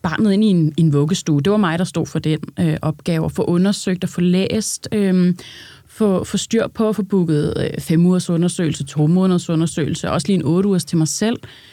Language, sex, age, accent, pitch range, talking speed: Danish, female, 30-49, native, 170-215 Hz, 225 wpm